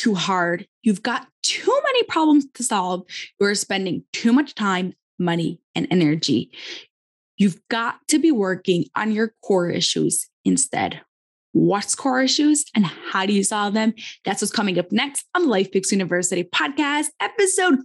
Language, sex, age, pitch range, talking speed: English, female, 20-39, 200-280 Hz, 160 wpm